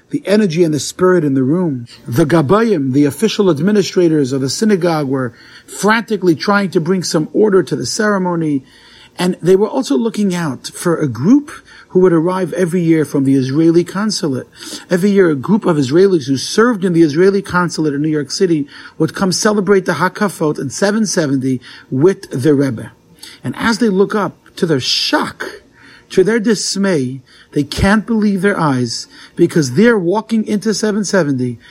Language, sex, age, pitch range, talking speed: English, male, 50-69, 145-195 Hz, 170 wpm